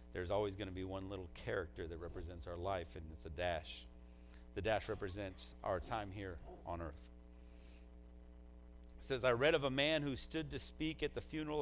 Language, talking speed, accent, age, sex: English, 195 wpm, American, 40-59, male